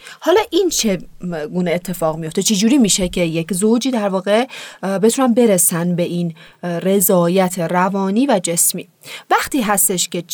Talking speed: 145 wpm